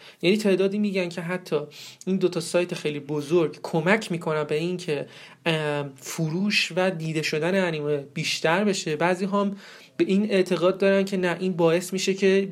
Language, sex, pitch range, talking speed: Persian, male, 155-195 Hz, 165 wpm